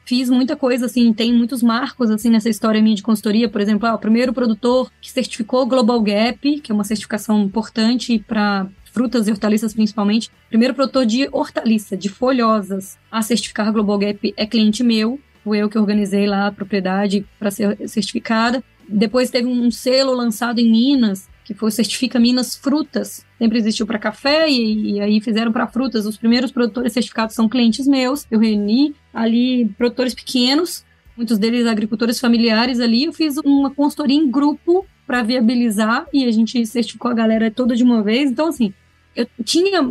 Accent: Brazilian